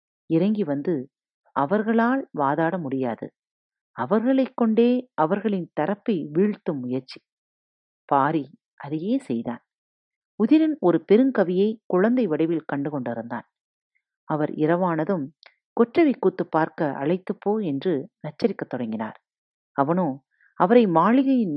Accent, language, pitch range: native, Tamil, 150-230 Hz